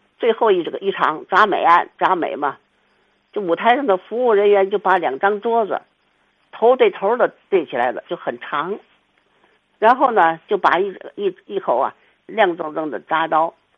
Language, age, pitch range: Chinese, 50-69, 170-260 Hz